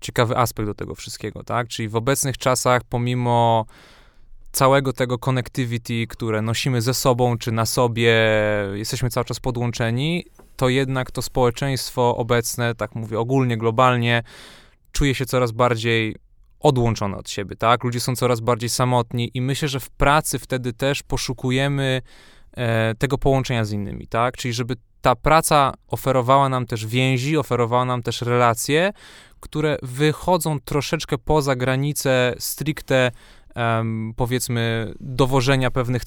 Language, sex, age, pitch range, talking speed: Polish, male, 20-39, 115-135 Hz, 135 wpm